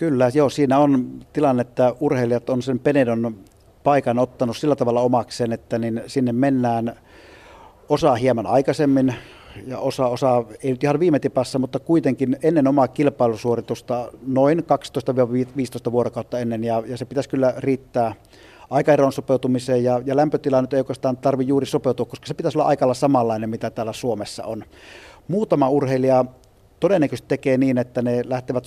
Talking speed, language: 155 wpm, Finnish